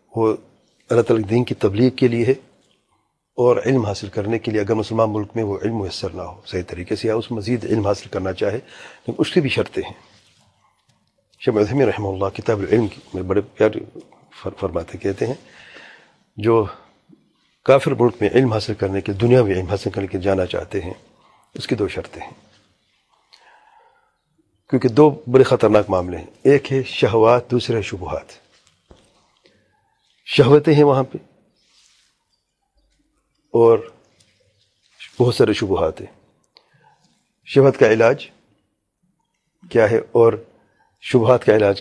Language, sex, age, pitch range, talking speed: English, male, 40-59, 105-135 Hz, 115 wpm